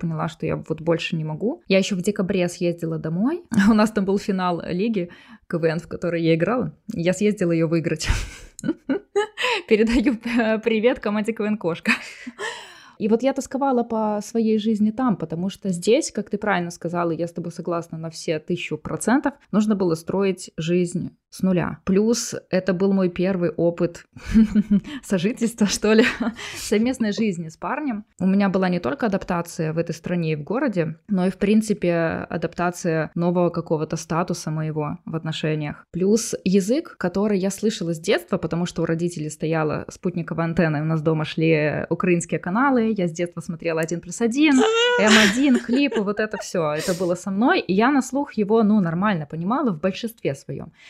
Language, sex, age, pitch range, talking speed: Ukrainian, female, 20-39, 170-220 Hz, 170 wpm